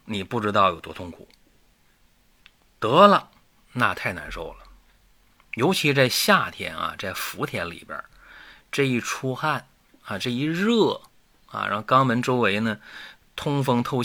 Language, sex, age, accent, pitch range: Chinese, male, 30-49, native, 100-130 Hz